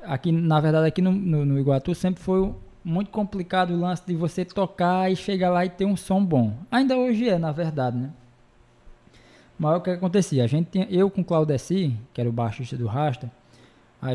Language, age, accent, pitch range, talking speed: Portuguese, 20-39, Brazilian, 135-190 Hz, 210 wpm